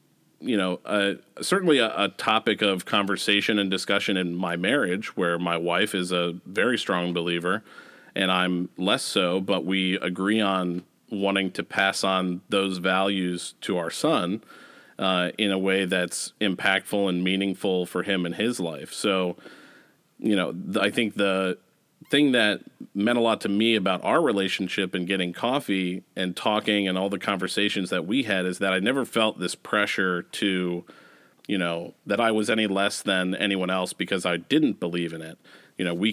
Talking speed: 180 wpm